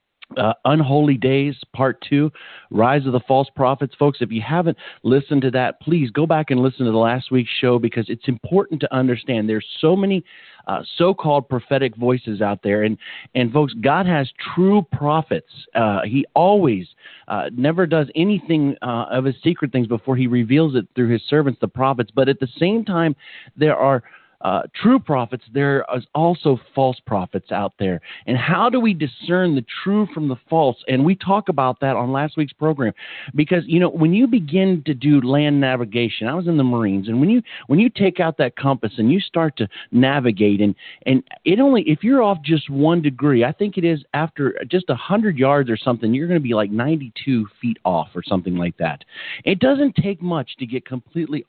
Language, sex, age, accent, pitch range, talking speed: English, male, 40-59, American, 120-165 Hz, 205 wpm